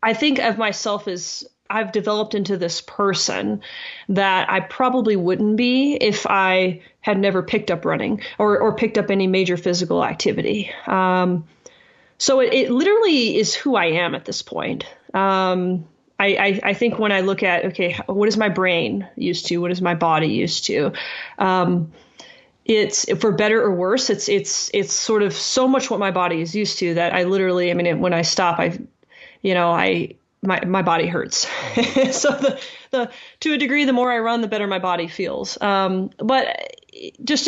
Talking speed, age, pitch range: 185 wpm, 30-49, 180-220 Hz